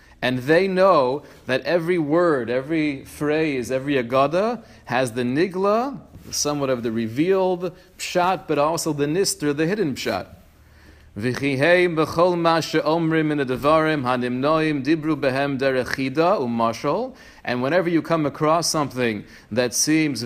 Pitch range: 130-175 Hz